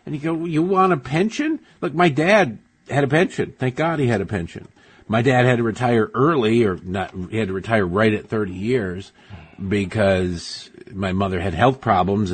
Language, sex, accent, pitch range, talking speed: English, male, American, 90-110 Hz, 205 wpm